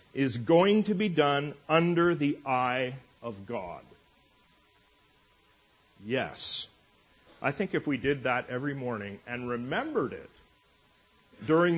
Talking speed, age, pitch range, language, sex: 115 wpm, 40-59, 125-170 Hz, English, male